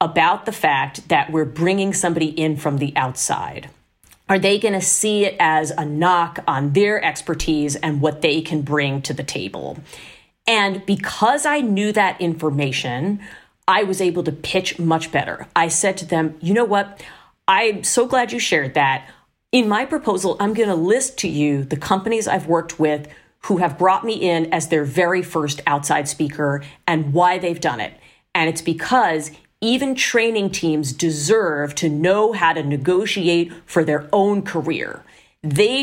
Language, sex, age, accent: English, female, 40-59, American